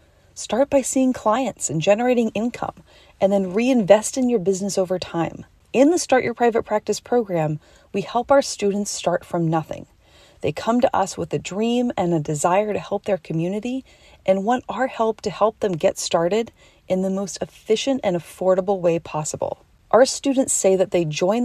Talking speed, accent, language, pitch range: 185 wpm, American, English, 175-240 Hz